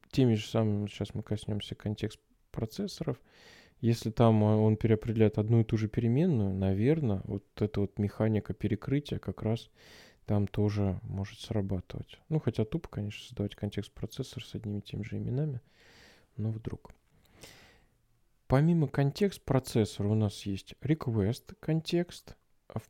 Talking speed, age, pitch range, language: 130 wpm, 20-39, 105-135 Hz, Russian